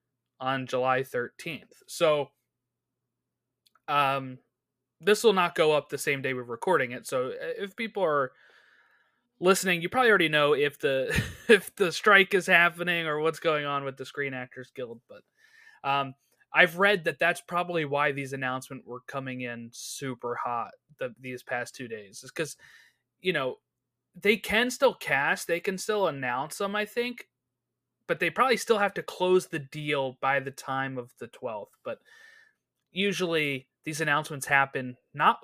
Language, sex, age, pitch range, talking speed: English, male, 20-39, 130-190 Hz, 165 wpm